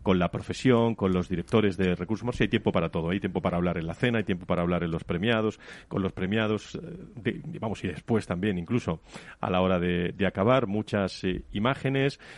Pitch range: 95-120 Hz